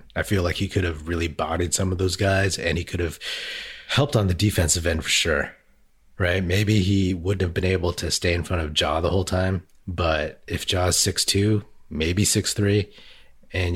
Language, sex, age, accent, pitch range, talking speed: English, male, 30-49, American, 85-105 Hz, 200 wpm